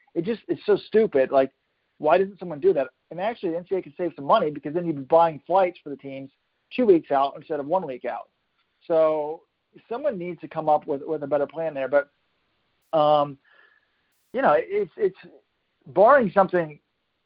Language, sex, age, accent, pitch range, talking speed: English, male, 50-69, American, 150-200 Hz, 195 wpm